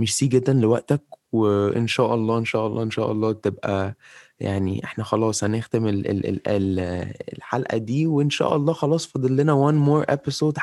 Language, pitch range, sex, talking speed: Arabic, 110-130 Hz, male, 175 wpm